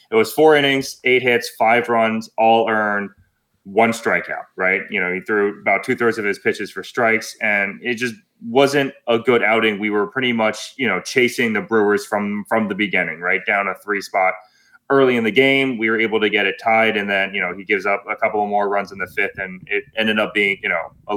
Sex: male